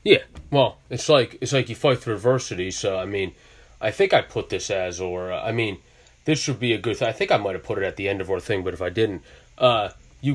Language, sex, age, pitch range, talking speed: English, male, 20-39, 100-130 Hz, 280 wpm